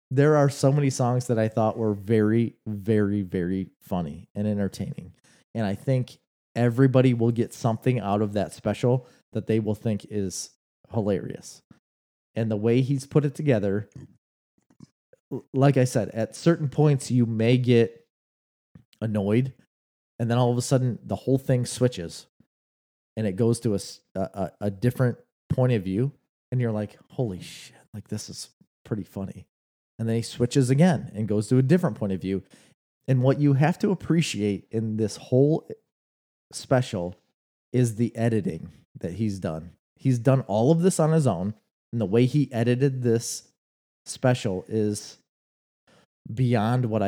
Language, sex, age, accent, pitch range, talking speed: English, male, 30-49, American, 100-125 Hz, 160 wpm